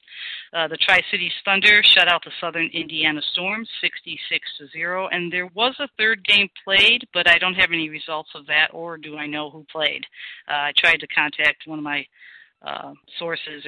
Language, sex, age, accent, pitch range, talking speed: English, female, 40-59, American, 155-190 Hz, 195 wpm